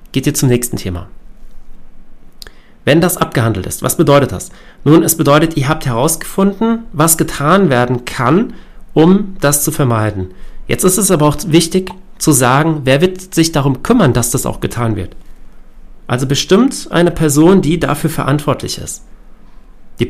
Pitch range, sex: 135-170 Hz, male